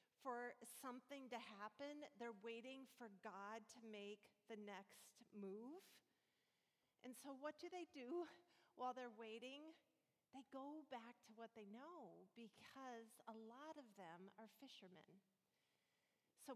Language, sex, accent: English, female, American